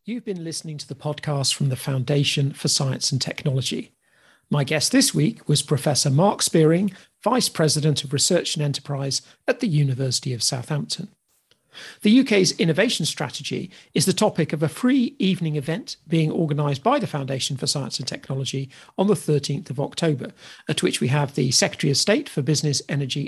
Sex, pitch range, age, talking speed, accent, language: male, 140-185 Hz, 50-69, 180 wpm, British, English